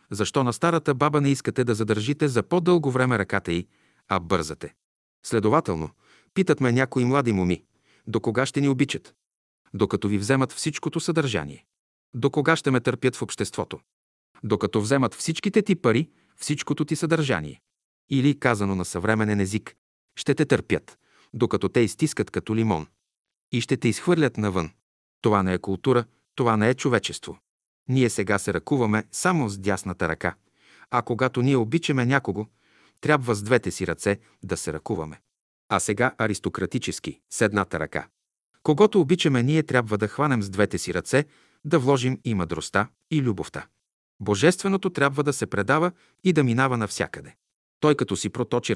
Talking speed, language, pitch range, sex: 160 wpm, Bulgarian, 105-145 Hz, male